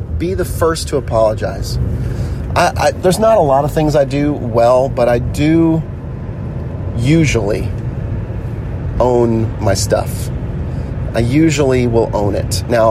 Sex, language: male, English